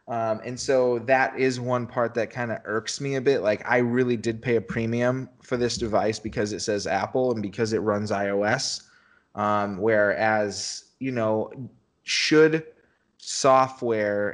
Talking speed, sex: 165 wpm, male